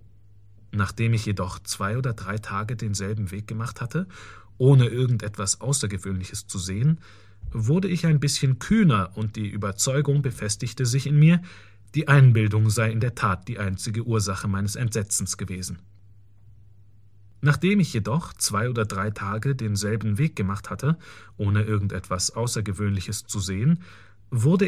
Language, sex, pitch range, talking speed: German, male, 100-135 Hz, 140 wpm